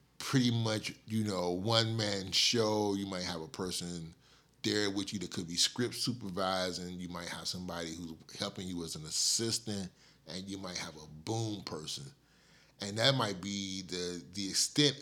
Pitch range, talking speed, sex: 85-110 Hz, 175 wpm, male